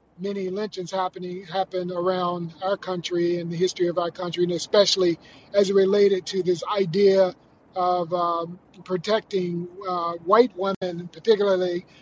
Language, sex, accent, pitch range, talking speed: English, male, American, 180-215 Hz, 135 wpm